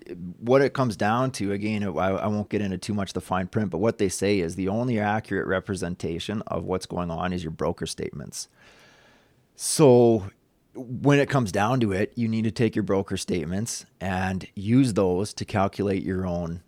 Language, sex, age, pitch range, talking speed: English, male, 30-49, 90-110 Hz, 200 wpm